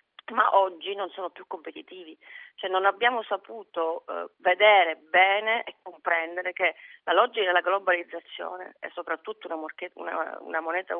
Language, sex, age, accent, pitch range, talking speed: Italian, female, 40-59, native, 170-215 Hz, 145 wpm